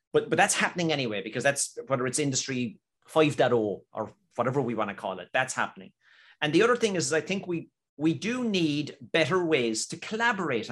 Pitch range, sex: 125-165 Hz, male